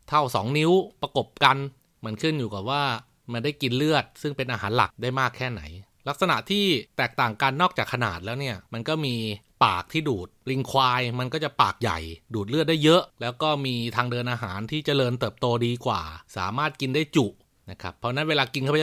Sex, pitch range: male, 110-145 Hz